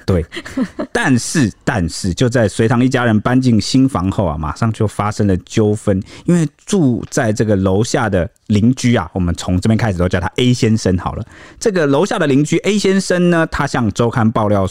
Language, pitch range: Chinese, 95-125 Hz